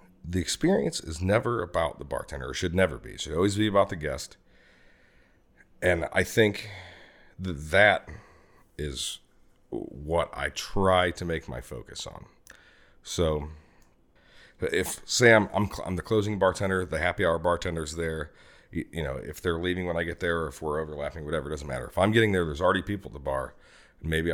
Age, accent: 40-59, American